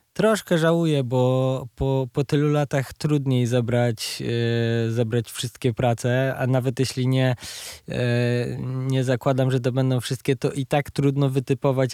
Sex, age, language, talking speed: male, 20-39, Polish, 145 wpm